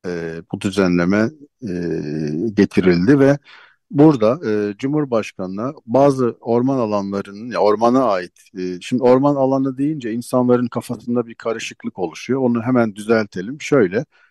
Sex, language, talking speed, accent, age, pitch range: male, Turkish, 100 wpm, native, 50-69, 105-130 Hz